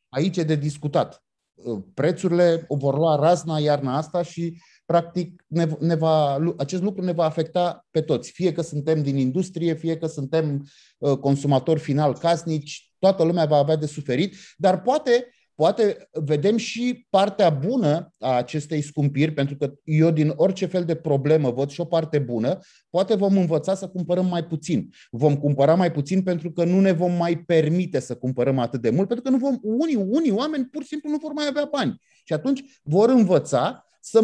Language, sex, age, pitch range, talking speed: Romanian, male, 30-49, 155-210 Hz, 180 wpm